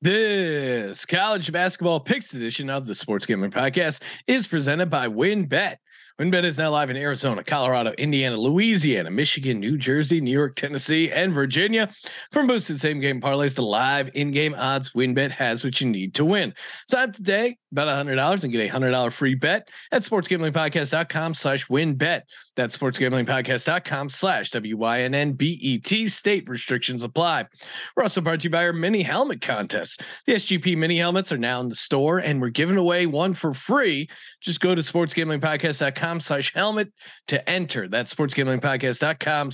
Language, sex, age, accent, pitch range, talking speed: English, male, 40-59, American, 135-180 Hz, 165 wpm